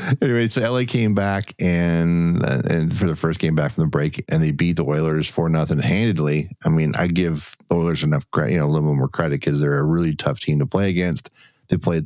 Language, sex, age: English, male, 50-69